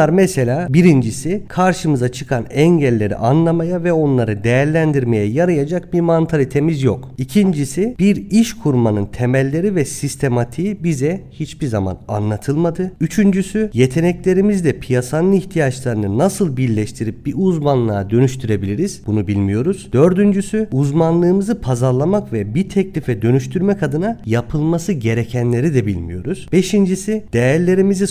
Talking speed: 105 wpm